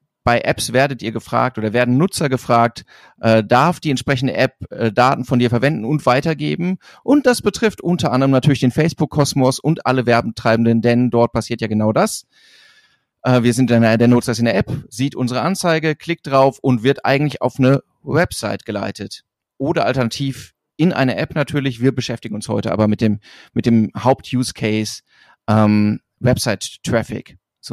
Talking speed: 165 wpm